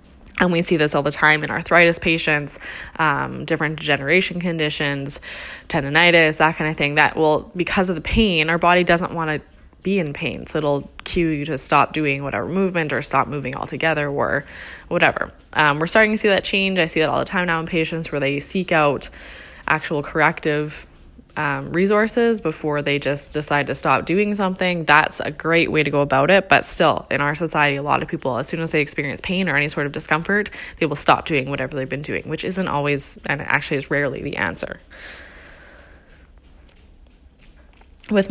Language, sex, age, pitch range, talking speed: English, female, 10-29, 140-170 Hz, 195 wpm